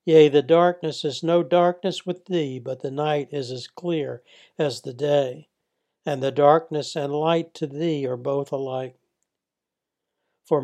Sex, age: male, 60-79